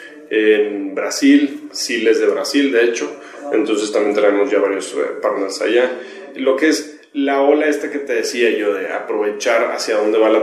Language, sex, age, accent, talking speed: Spanish, male, 30-49, Mexican, 185 wpm